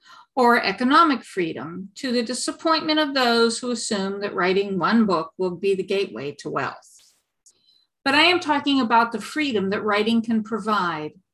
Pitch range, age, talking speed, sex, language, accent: 195-260 Hz, 50-69, 165 wpm, female, English, American